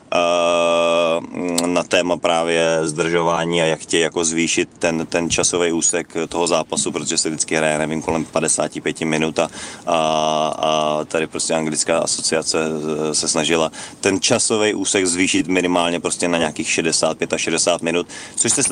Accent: native